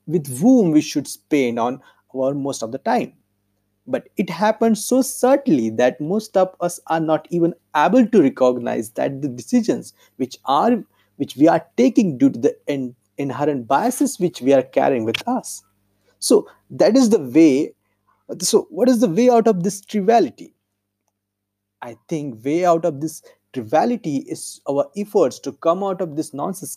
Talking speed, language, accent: 170 wpm, Hindi, native